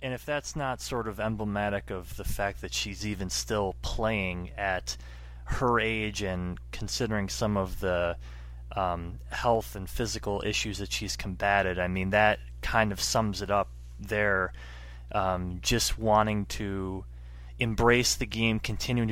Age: 20-39